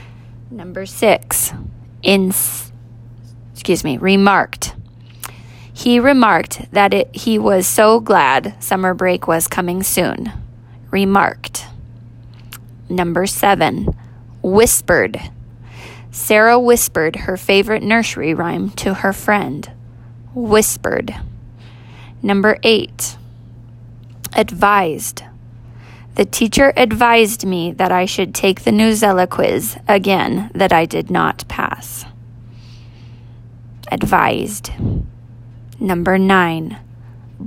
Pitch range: 120-195 Hz